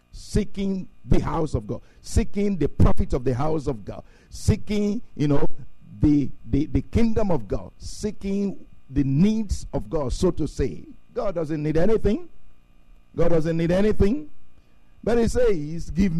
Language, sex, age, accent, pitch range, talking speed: English, male, 50-69, Nigerian, 120-195 Hz, 155 wpm